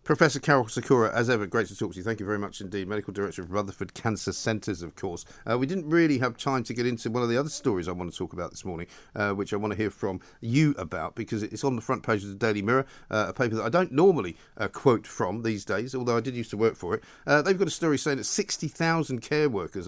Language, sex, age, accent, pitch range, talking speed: English, male, 50-69, British, 100-140 Hz, 280 wpm